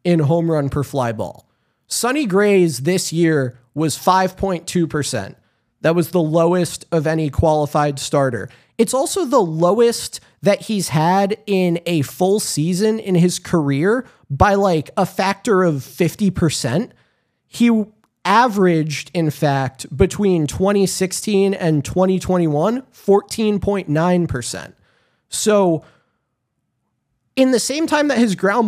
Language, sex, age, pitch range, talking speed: English, male, 30-49, 150-200 Hz, 115 wpm